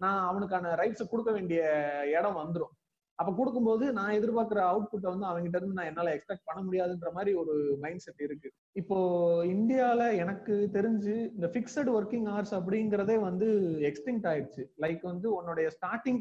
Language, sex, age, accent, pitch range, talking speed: Tamil, male, 30-49, native, 165-215 Hz, 150 wpm